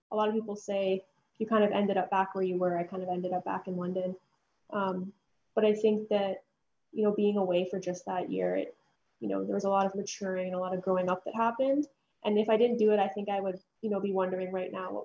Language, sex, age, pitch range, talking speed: English, female, 10-29, 185-210 Hz, 270 wpm